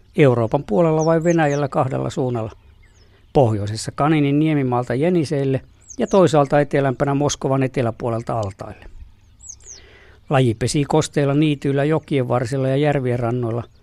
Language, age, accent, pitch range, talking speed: Finnish, 60-79, native, 110-150 Hz, 110 wpm